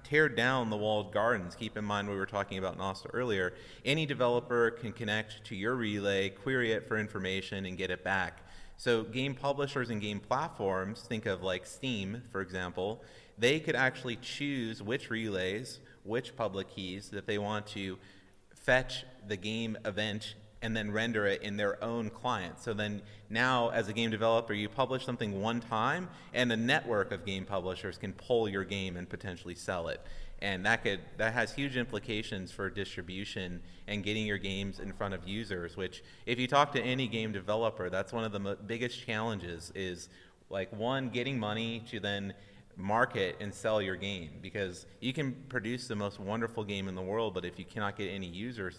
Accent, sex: American, male